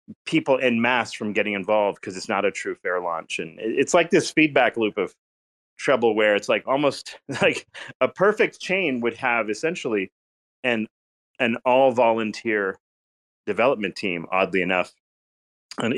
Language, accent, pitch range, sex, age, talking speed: English, American, 95-125 Hz, male, 30-49, 155 wpm